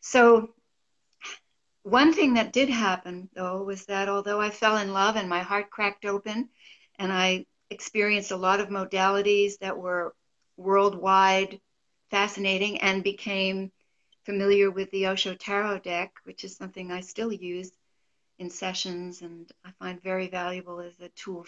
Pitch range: 180-210 Hz